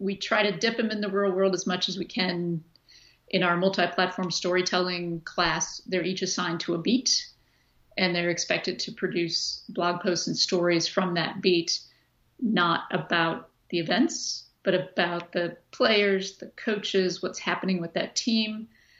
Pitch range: 175-215 Hz